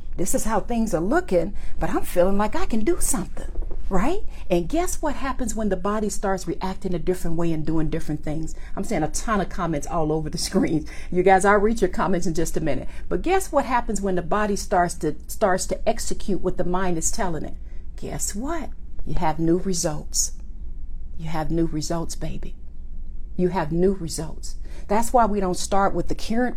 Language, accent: English, American